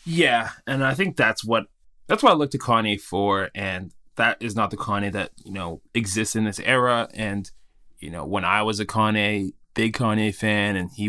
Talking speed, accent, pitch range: 210 wpm, American, 100-110 Hz